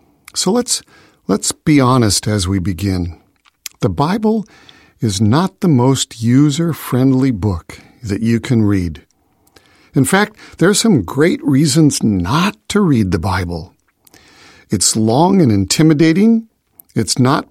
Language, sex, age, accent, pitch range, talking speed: English, male, 50-69, American, 125-195 Hz, 130 wpm